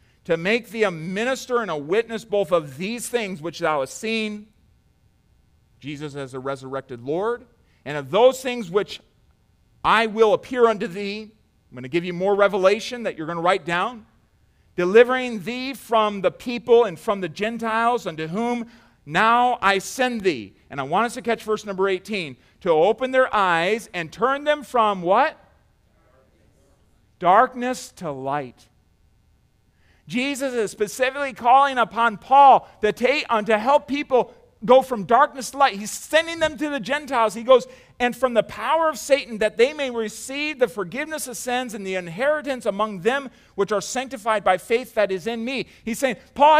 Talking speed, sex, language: 175 wpm, male, English